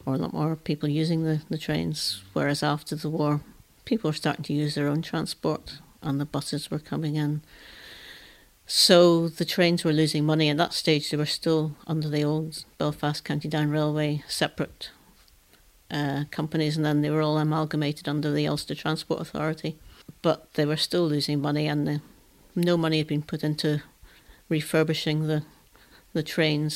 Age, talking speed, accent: 60-79, 175 wpm, British